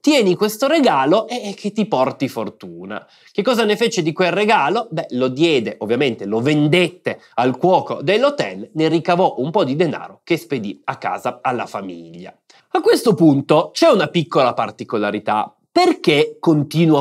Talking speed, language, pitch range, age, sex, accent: 160 wpm, Italian, 125-190 Hz, 30-49, male, native